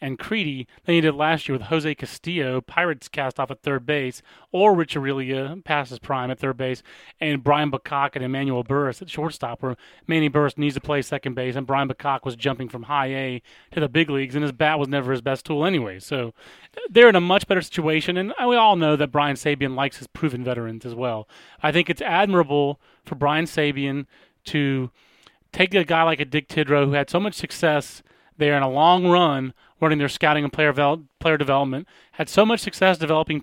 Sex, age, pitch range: male, 30-49, 135-165 Hz